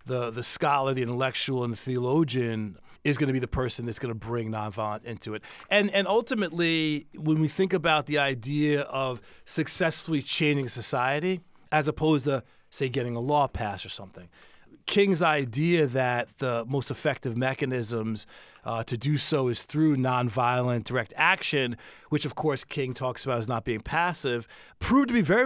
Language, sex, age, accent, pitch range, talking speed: English, male, 30-49, American, 125-155 Hz, 175 wpm